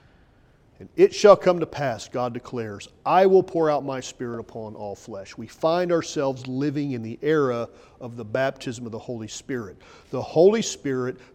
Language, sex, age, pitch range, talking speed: English, male, 40-59, 115-160 Hz, 180 wpm